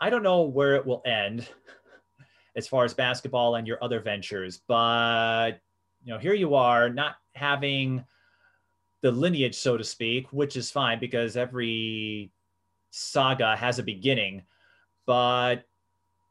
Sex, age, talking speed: male, 30-49, 140 wpm